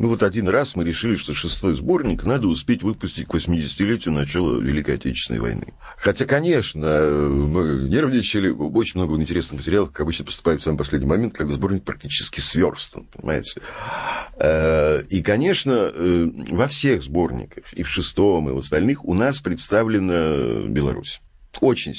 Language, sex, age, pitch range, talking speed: Russian, male, 50-69, 80-120 Hz, 145 wpm